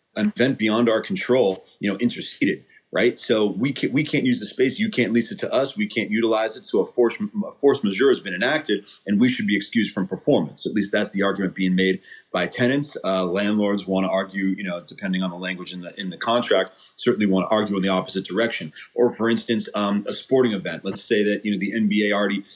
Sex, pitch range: male, 95-120 Hz